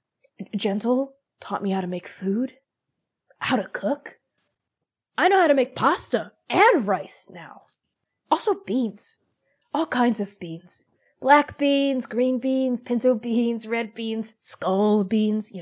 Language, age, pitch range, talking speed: English, 20-39, 180-235 Hz, 140 wpm